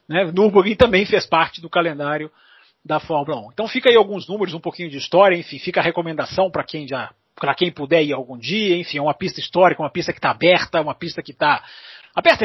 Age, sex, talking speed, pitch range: 40-59, male, 220 wpm, 150-200 Hz